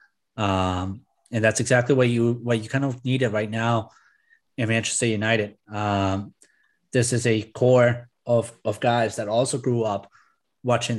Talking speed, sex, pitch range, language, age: 165 wpm, male, 105-125 Hz, English, 20-39